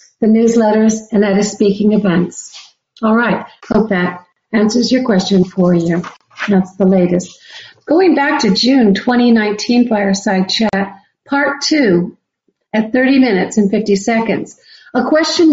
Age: 50-69